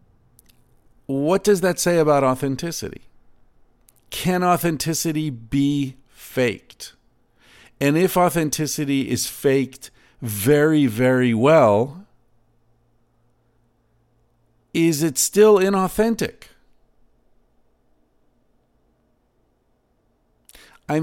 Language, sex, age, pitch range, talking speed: English, male, 50-69, 110-140 Hz, 65 wpm